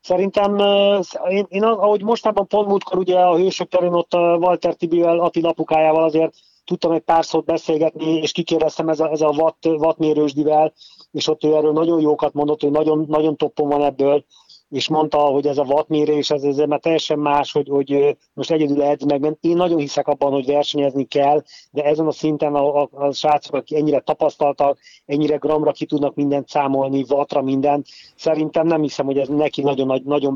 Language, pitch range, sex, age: Hungarian, 135-155 Hz, male, 30-49